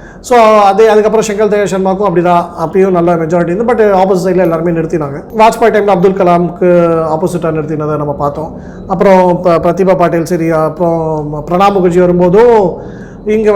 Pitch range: 175-205 Hz